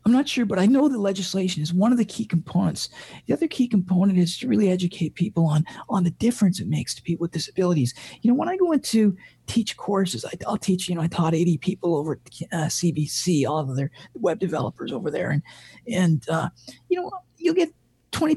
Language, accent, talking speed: English, American, 220 wpm